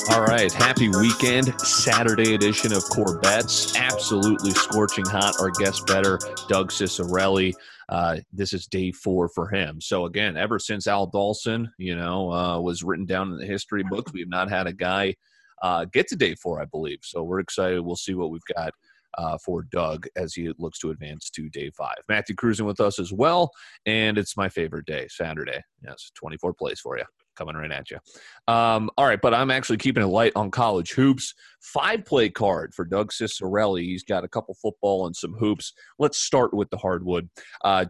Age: 30-49